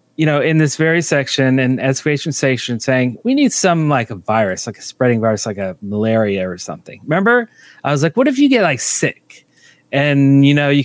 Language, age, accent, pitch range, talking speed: English, 30-49, American, 130-165 Hz, 215 wpm